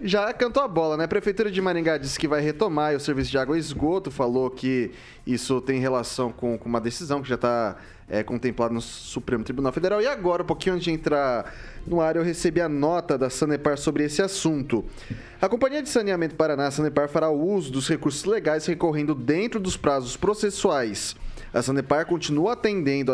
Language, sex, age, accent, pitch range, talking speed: Portuguese, male, 20-39, Brazilian, 140-180 Hz, 195 wpm